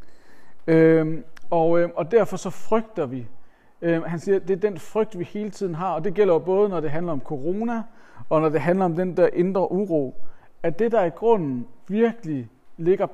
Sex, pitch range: male, 155-200 Hz